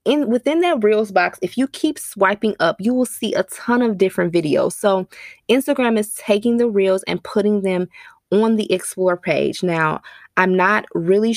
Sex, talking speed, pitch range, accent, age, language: female, 185 wpm, 180-235 Hz, American, 20-39, English